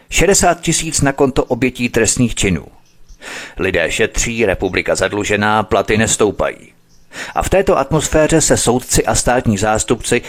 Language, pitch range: Czech, 100-135 Hz